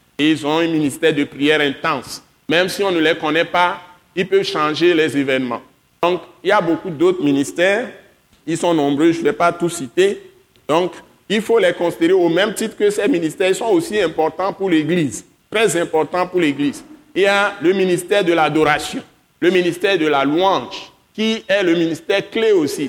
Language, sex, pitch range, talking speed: French, male, 150-195 Hz, 195 wpm